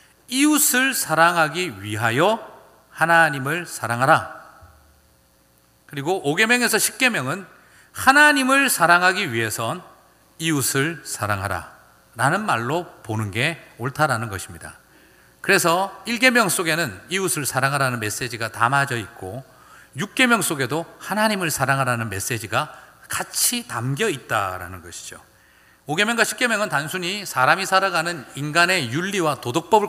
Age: 40-59